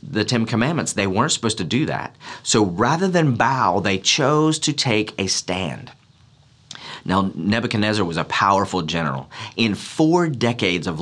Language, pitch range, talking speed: English, 90-125 Hz, 160 wpm